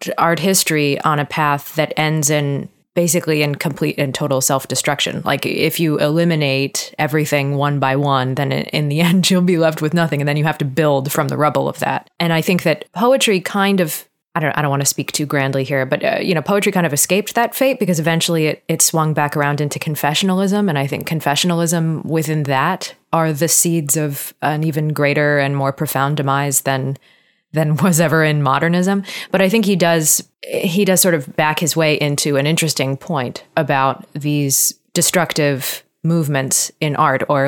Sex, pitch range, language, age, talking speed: female, 140-170 Hz, English, 20-39, 200 wpm